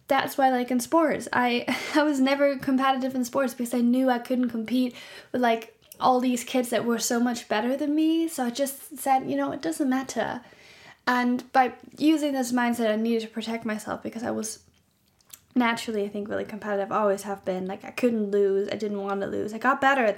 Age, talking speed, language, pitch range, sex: 10-29, 215 wpm, English, 200-250 Hz, female